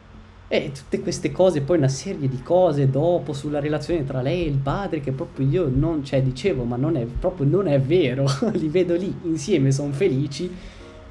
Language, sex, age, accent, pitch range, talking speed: Italian, male, 20-39, native, 120-155 Hz, 195 wpm